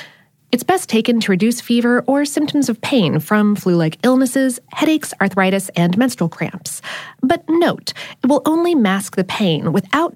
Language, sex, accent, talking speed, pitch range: English, female, American, 160 wpm, 175-255 Hz